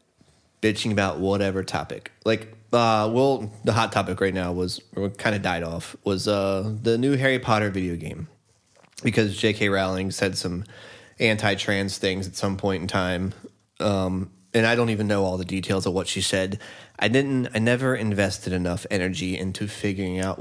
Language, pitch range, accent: English, 95-130 Hz, American